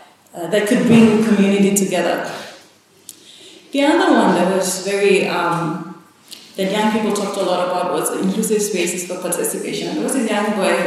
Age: 30-49